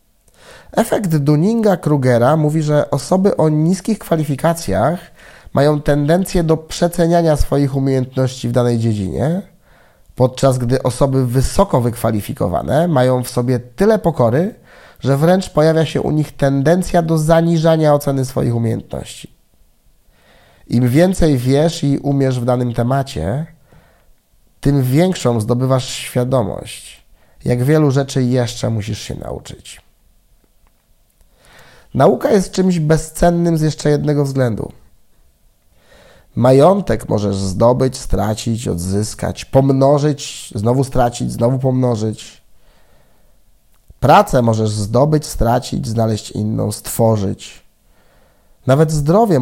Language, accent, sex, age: Polish, native, male, 30-49